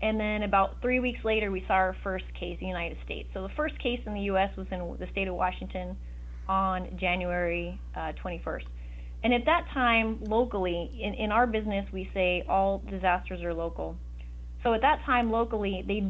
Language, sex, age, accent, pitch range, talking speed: English, female, 30-49, American, 165-210 Hz, 200 wpm